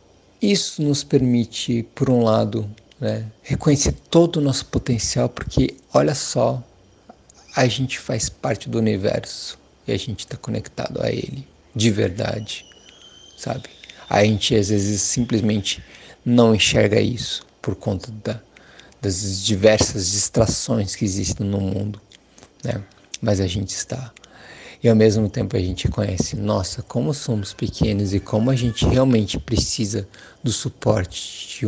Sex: male